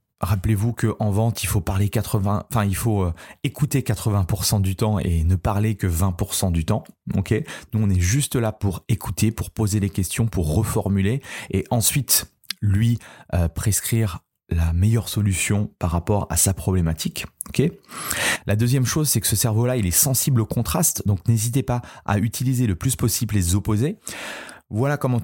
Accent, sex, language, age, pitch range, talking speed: French, male, French, 30-49, 100-120 Hz, 175 wpm